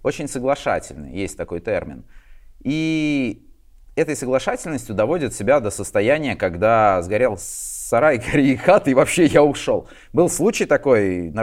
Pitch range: 110-150 Hz